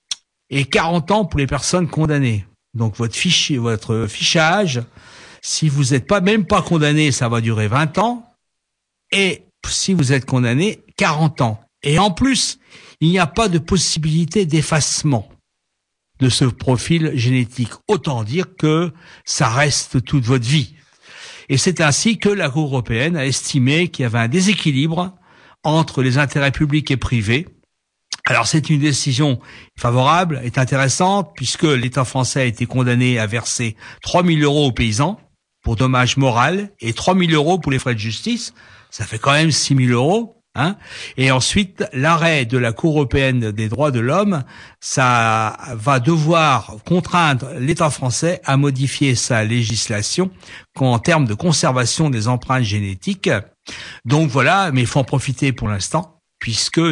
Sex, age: male, 60-79